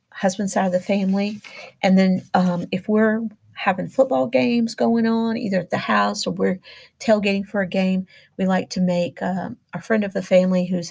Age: 40-59